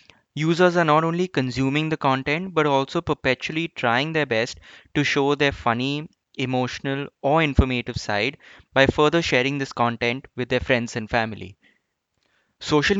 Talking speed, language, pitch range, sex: 150 wpm, English, 125-150 Hz, male